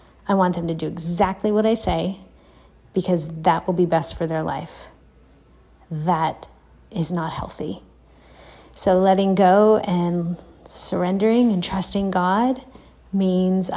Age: 30-49